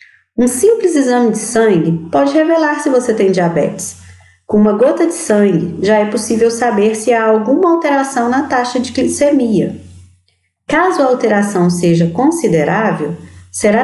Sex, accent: female, Brazilian